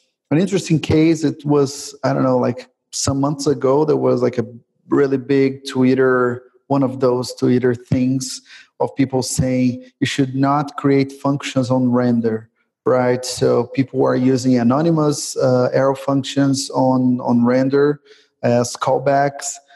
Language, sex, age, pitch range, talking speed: English, male, 30-49, 130-150 Hz, 145 wpm